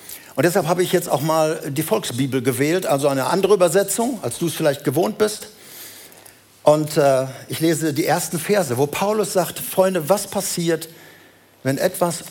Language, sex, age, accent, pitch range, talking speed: German, male, 60-79, German, 125-180 Hz, 170 wpm